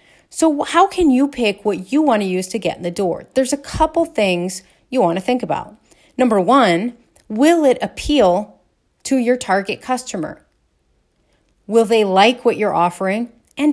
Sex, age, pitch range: female, 30-49, 190-270 Hz